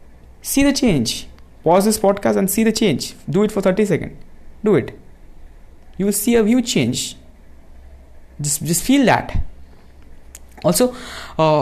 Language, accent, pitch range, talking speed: Hindi, native, 135-200 Hz, 145 wpm